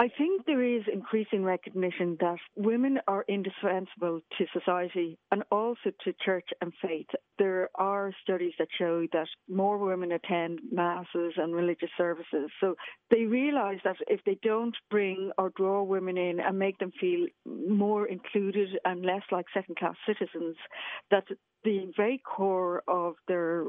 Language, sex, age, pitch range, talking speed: English, female, 60-79, 175-205 Hz, 150 wpm